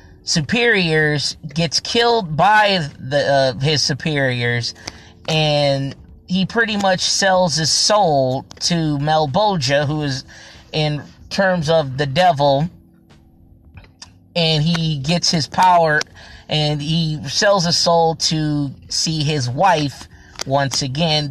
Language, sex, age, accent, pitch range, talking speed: English, male, 20-39, American, 135-175 Hz, 115 wpm